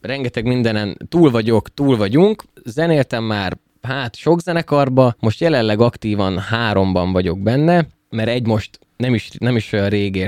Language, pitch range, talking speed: Hungarian, 100-130 Hz, 150 wpm